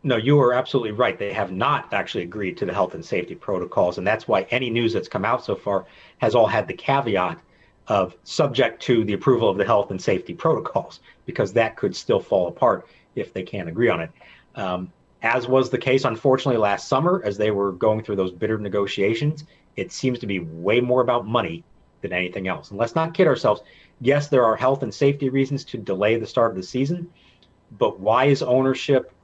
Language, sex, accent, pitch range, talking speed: English, male, American, 100-135 Hz, 215 wpm